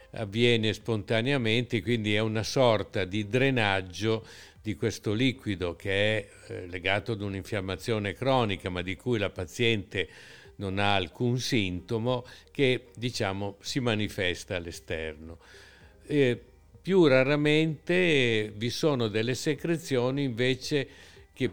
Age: 50-69